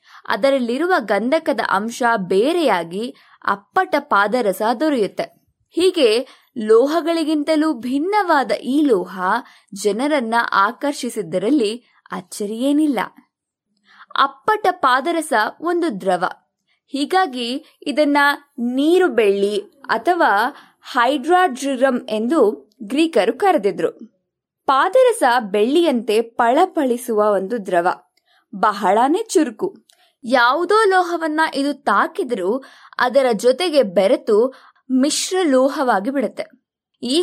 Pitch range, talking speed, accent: 225-320 Hz, 75 wpm, native